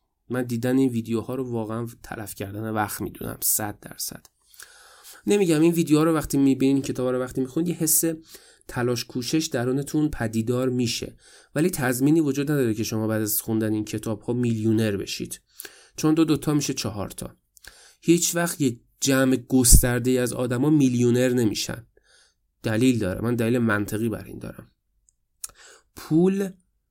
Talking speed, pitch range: 155 wpm, 115-155 Hz